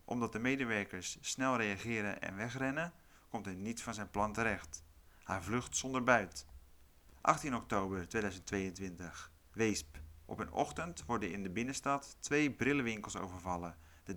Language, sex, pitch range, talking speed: Dutch, male, 90-125 Hz, 140 wpm